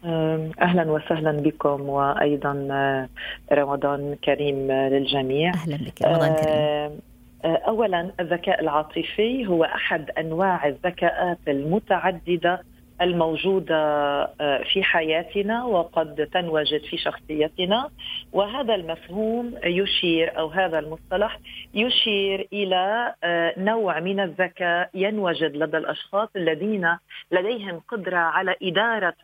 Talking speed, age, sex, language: 90 wpm, 40-59, female, Arabic